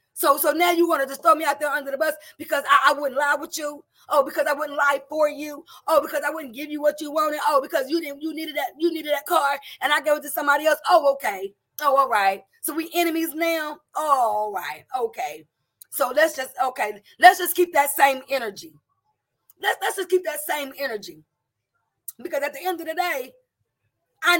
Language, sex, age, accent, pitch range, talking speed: English, female, 30-49, American, 260-345 Hz, 230 wpm